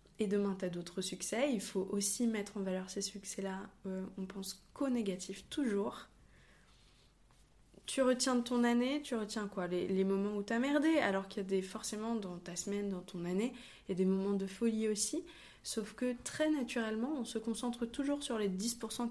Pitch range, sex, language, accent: 185-225 Hz, female, French, French